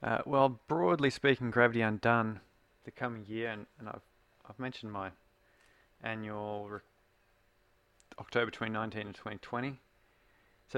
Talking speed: 120 wpm